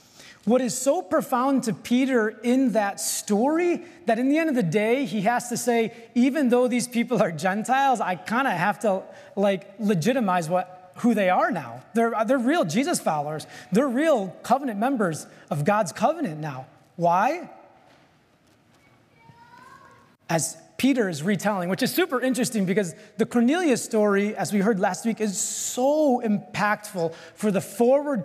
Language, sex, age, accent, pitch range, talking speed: English, male, 30-49, American, 160-230 Hz, 160 wpm